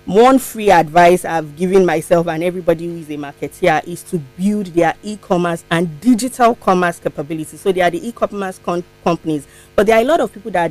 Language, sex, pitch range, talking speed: English, female, 160-200 Hz, 200 wpm